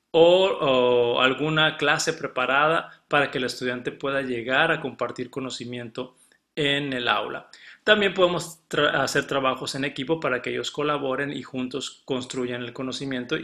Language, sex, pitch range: Spanish, male, 130-160 Hz